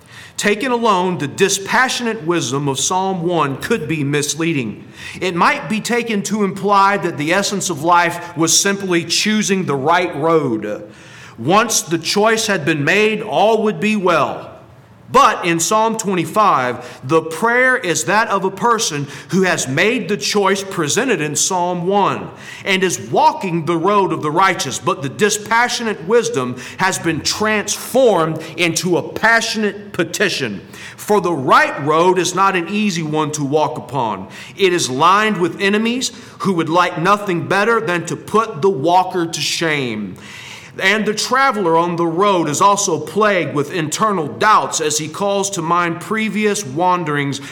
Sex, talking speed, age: male, 160 wpm, 40-59